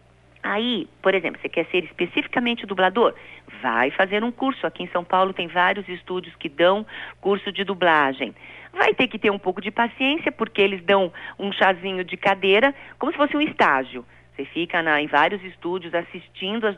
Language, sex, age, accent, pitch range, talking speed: Portuguese, female, 40-59, Brazilian, 180-270 Hz, 180 wpm